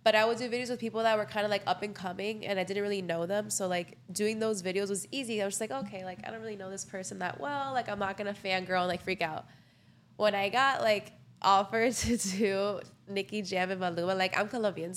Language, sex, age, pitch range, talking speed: English, female, 20-39, 185-215 Hz, 265 wpm